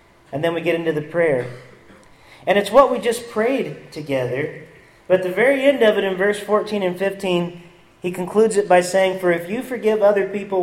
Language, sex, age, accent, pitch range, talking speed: English, male, 40-59, American, 130-180 Hz, 210 wpm